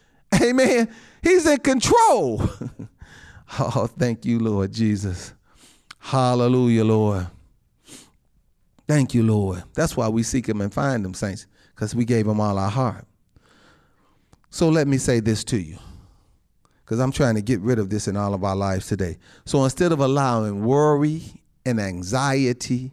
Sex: male